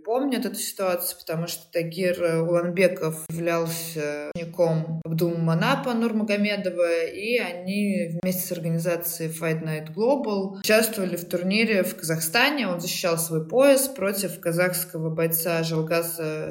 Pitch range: 165-205 Hz